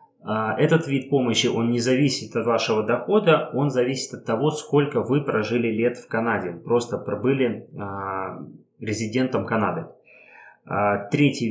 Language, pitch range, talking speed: Russian, 115-145 Hz, 125 wpm